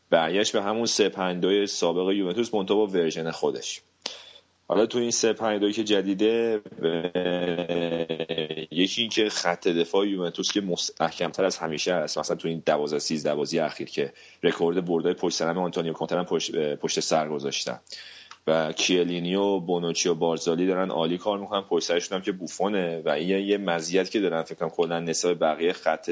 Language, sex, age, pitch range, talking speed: Persian, male, 30-49, 80-105 Hz, 150 wpm